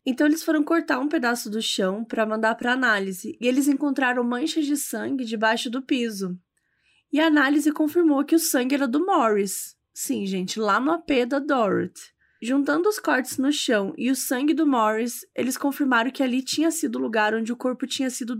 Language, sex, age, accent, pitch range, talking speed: Portuguese, female, 20-39, Brazilian, 230-300 Hz, 200 wpm